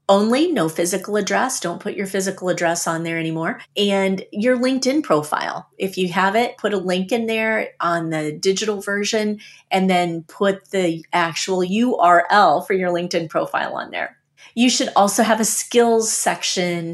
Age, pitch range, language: 30-49, 180-225 Hz, English